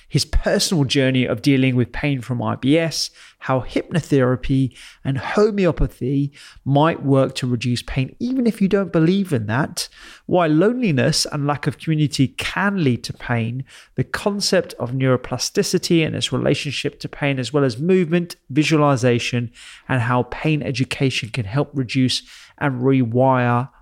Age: 30-49